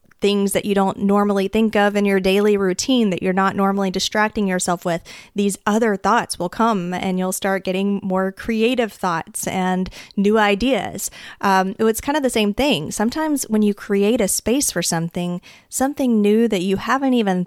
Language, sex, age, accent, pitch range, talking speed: English, female, 20-39, American, 185-220 Hz, 185 wpm